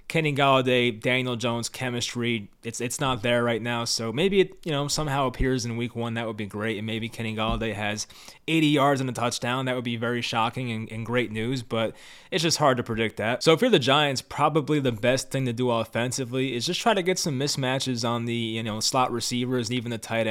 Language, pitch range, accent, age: English, 110-135 Hz, American, 20-39